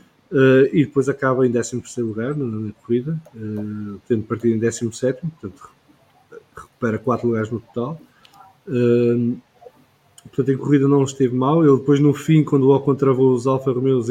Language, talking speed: English, 160 wpm